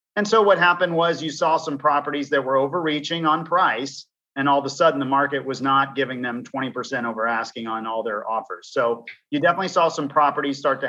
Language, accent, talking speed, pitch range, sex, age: English, American, 220 wpm, 130-165 Hz, male, 40-59